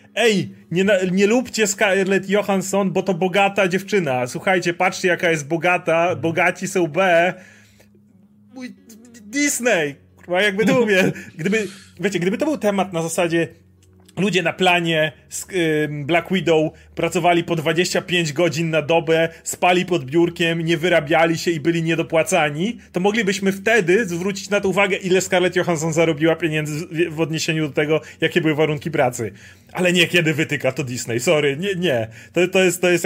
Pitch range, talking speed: 160-190 Hz, 150 wpm